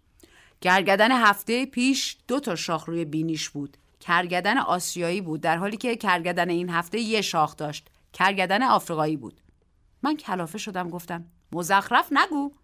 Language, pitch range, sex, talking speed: Persian, 170-260 Hz, female, 140 wpm